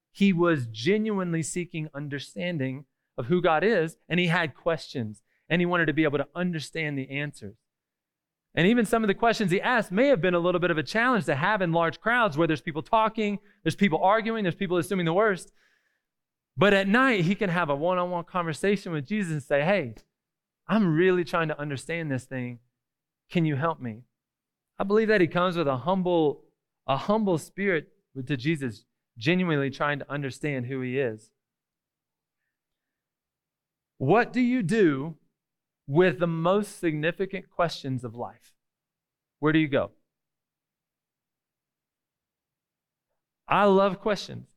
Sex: male